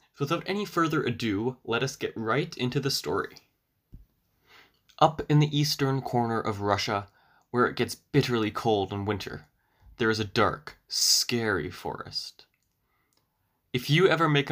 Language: English